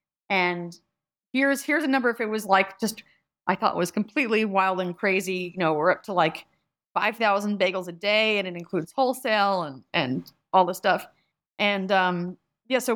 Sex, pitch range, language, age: female, 185-235 Hz, English, 30-49